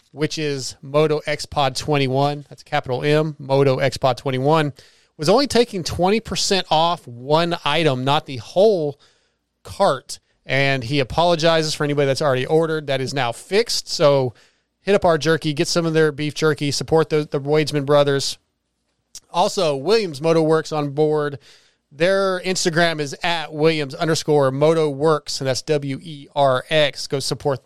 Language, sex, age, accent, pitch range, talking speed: English, male, 30-49, American, 140-165 Hz, 155 wpm